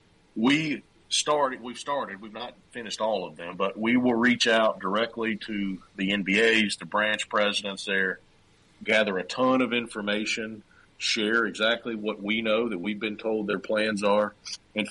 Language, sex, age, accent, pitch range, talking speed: English, male, 40-59, American, 95-115 Hz, 165 wpm